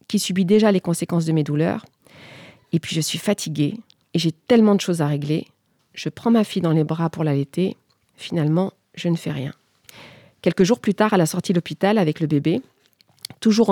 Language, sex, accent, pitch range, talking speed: French, female, French, 160-200 Hz, 205 wpm